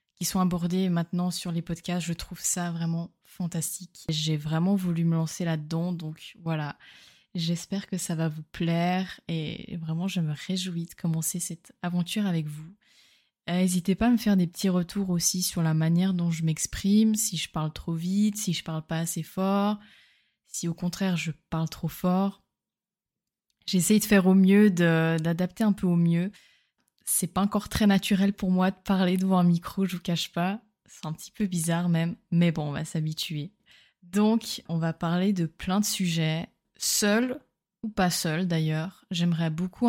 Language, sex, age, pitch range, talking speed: French, female, 20-39, 170-195 Hz, 185 wpm